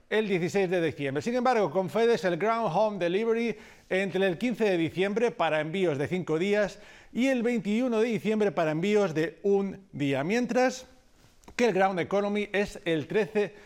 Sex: male